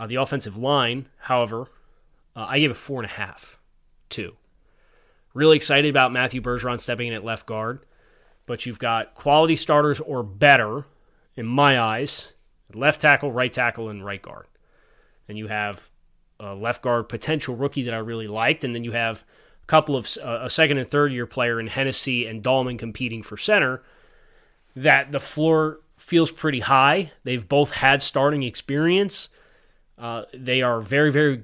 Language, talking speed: English, 170 wpm